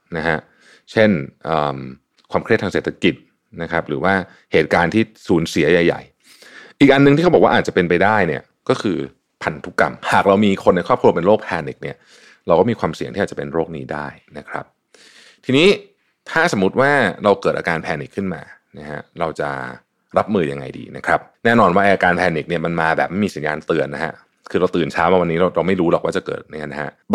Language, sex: Thai, male